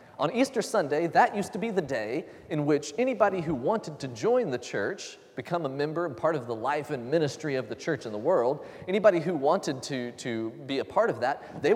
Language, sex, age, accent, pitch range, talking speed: English, male, 30-49, American, 140-225 Hz, 230 wpm